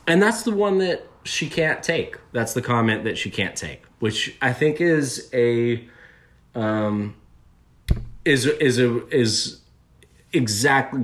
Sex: male